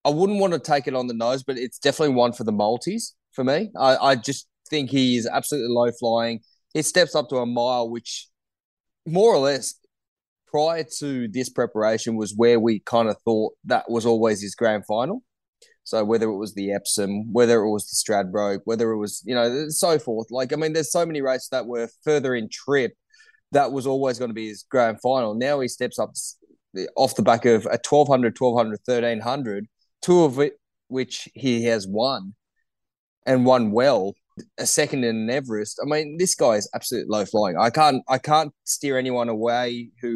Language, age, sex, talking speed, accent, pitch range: English, 20-39, male, 200 wpm, Australian, 115-140 Hz